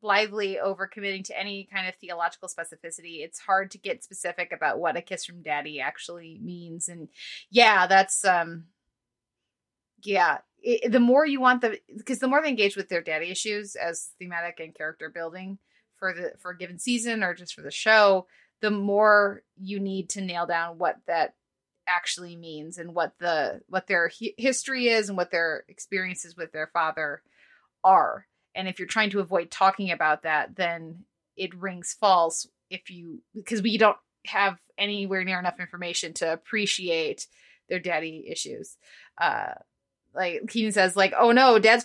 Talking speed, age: 175 wpm, 20-39